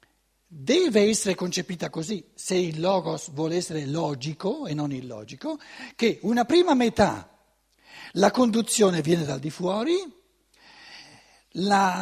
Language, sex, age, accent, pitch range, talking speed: Italian, male, 60-79, native, 165-250 Hz, 120 wpm